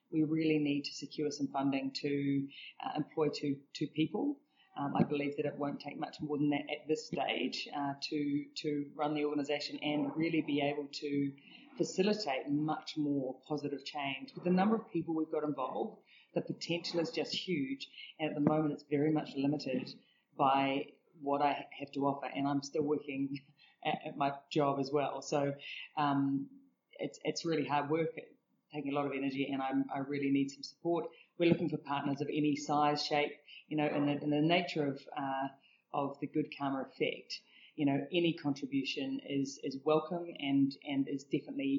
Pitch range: 140-155 Hz